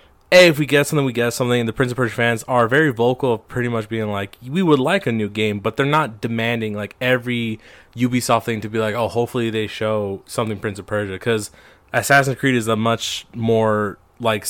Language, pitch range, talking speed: English, 110-135 Hz, 230 wpm